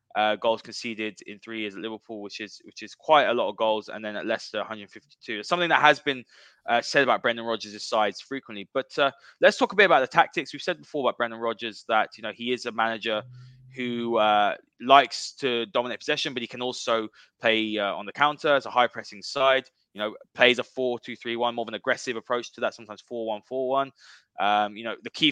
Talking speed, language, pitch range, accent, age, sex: 225 wpm, English, 110-130 Hz, British, 20-39, male